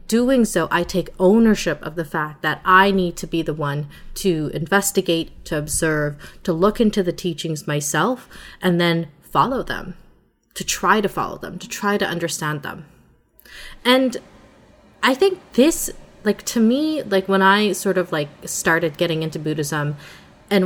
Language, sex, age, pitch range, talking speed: English, female, 20-39, 165-200 Hz, 165 wpm